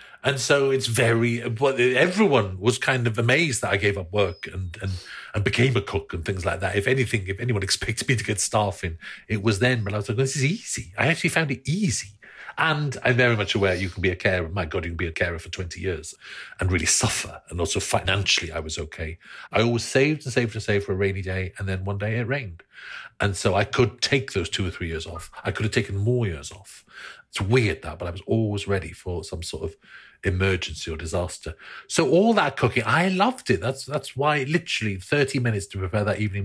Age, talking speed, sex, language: 40-59, 235 wpm, male, English